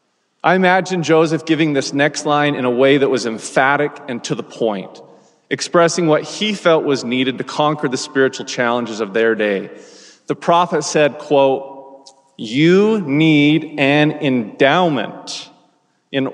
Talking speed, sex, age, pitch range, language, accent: 145 wpm, male, 30-49, 135-170 Hz, English, American